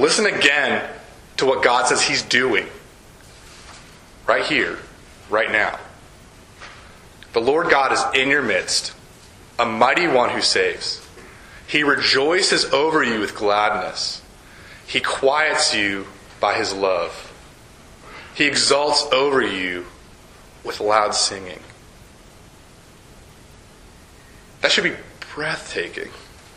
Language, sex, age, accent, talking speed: English, male, 30-49, American, 105 wpm